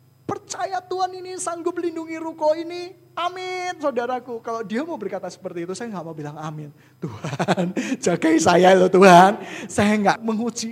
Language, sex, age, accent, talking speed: Indonesian, male, 20-39, native, 155 wpm